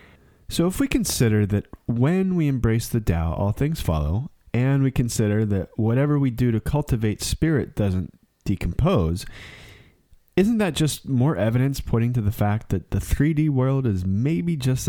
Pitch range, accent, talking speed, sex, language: 100-135 Hz, American, 165 wpm, male, English